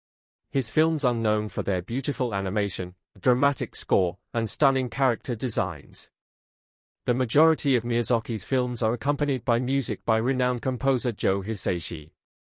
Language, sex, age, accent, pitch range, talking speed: English, male, 40-59, British, 105-135 Hz, 135 wpm